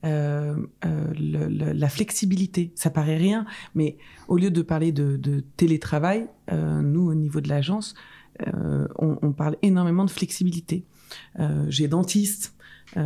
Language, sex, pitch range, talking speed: French, female, 150-185 Hz, 155 wpm